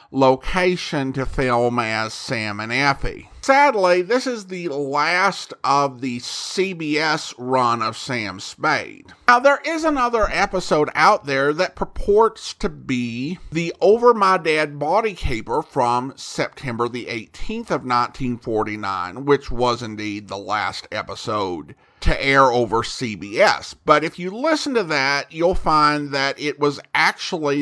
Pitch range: 125-185 Hz